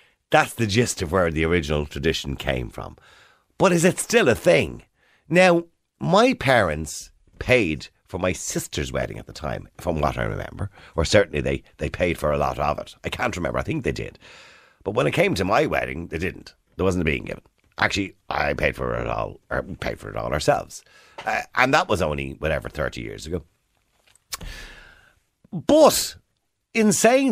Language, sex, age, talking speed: English, male, 50-69, 180 wpm